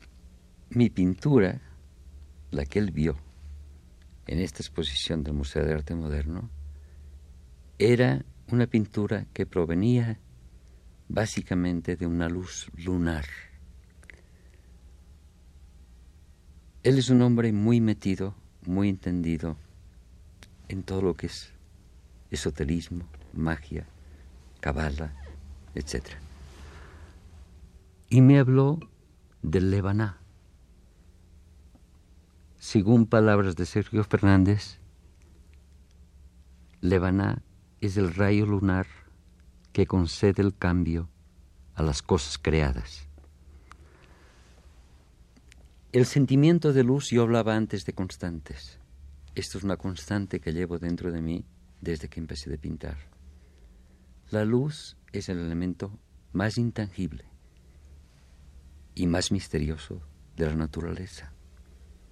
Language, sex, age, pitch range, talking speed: Spanish, male, 50-69, 75-95 Hz, 95 wpm